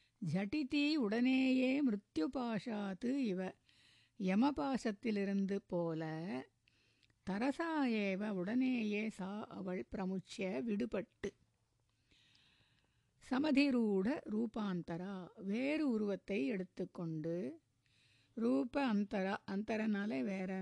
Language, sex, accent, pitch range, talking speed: Tamil, female, native, 180-240 Hz, 65 wpm